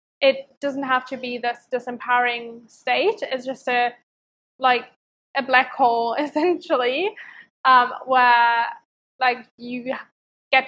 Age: 10-29